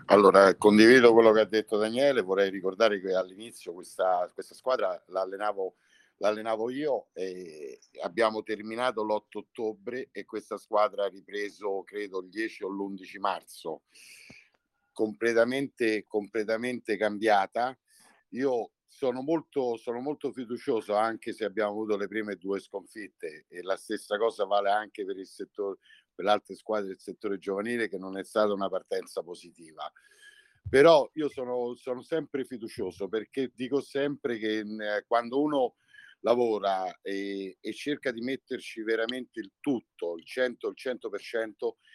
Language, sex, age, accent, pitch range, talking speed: Italian, male, 50-69, native, 105-135 Hz, 140 wpm